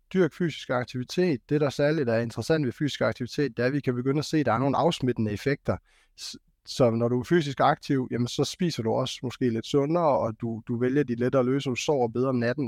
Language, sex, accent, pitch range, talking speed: Danish, male, native, 115-150 Hz, 240 wpm